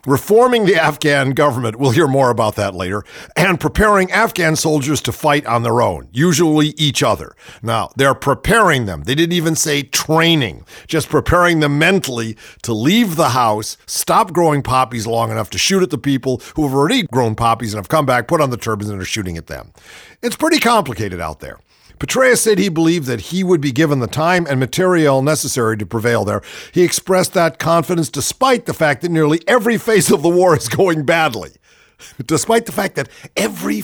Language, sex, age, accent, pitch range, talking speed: English, male, 50-69, American, 125-185 Hz, 195 wpm